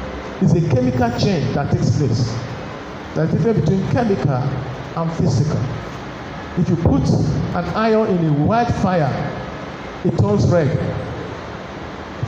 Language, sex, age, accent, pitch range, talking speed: English, male, 50-69, Nigerian, 135-170 Hz, 130 wpm